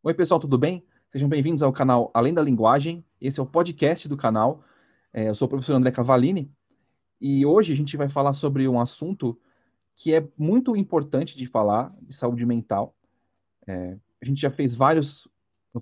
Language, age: Portuguese, 30-49